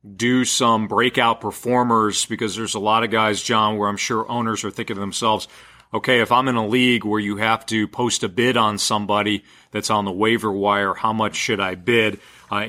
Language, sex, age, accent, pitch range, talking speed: English, male, 40-59, American, 105-125 Hz, 215 wpm